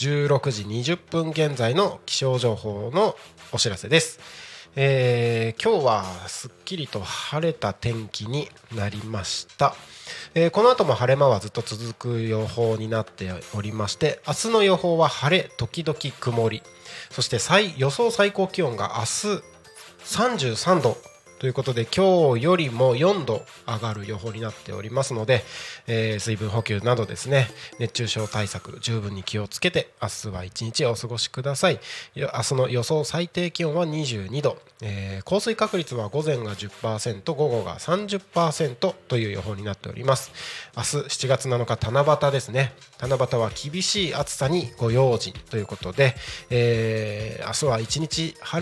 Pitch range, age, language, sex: 110-155 Hz, 20-39, Japanese, male